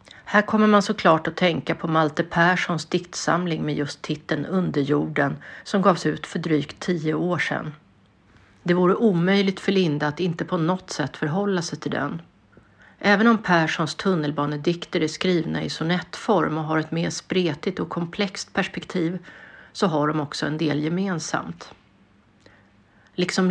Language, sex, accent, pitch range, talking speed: Swedish, female, native, 155-185 Hz, 155 wpm